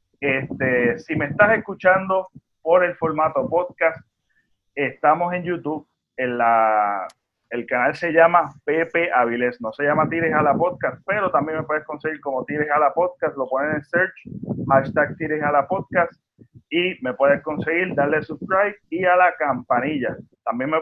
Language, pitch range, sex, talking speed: Spanish, 145-185 Hz, male, 165 wpm